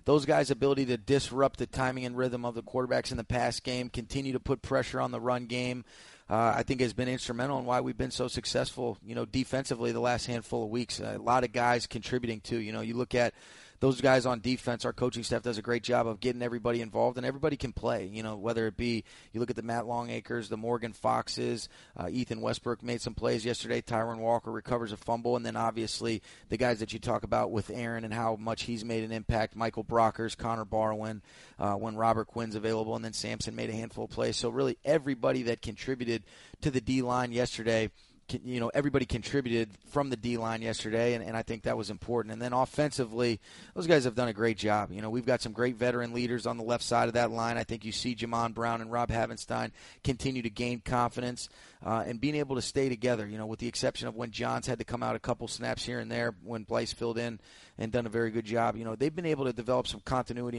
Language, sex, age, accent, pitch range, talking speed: English, male, 30-49, American, 115-125 Hz, 240 wpm